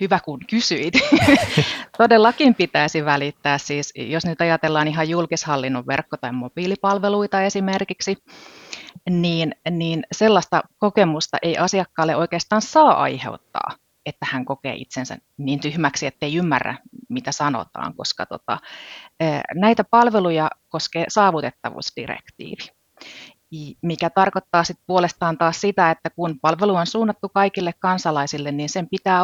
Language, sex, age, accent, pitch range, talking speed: Finnish, female, 30-49, native, 145-190 Hz, 115 wpm